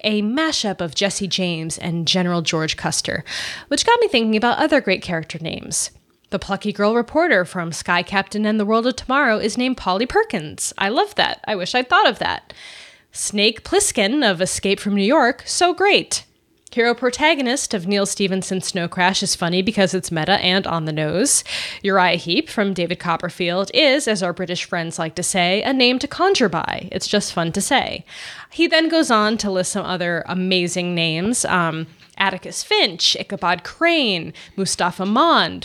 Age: 20-39